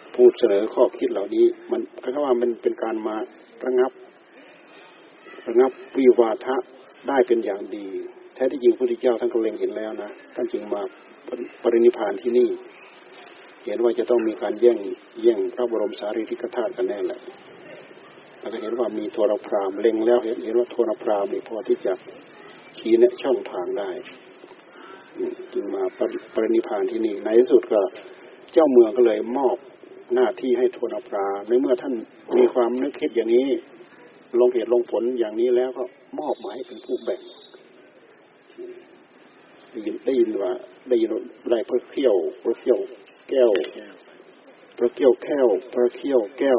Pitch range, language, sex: 340-370 Hz, Thai, male